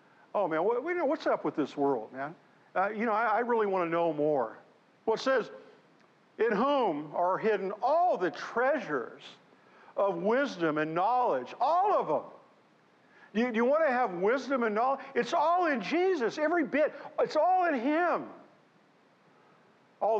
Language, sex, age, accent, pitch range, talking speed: English, male, 50-69, American, 155-235 Hz, 160 wpm